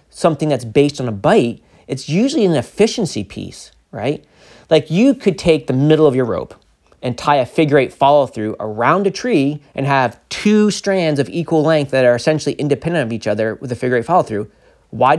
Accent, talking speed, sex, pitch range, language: American, 205 wpm, male, 115-155 Hz, English